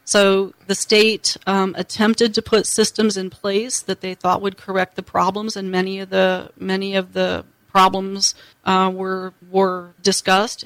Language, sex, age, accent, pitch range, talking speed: English, female, 40-59, American, 180-195 Hz, 165 wpm